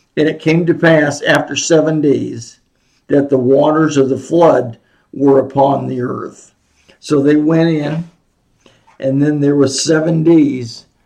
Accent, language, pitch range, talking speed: American, English, 130-150 Hz, 150 wpm